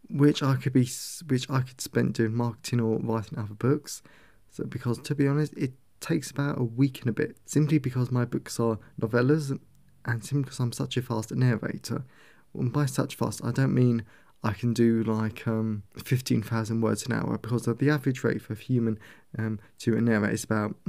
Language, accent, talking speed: English, British, 200 wpm